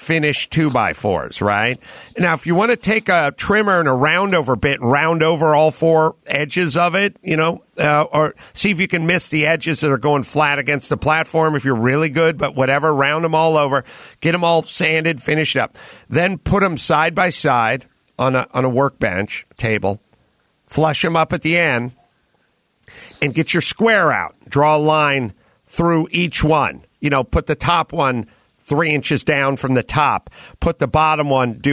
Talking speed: 200 wpm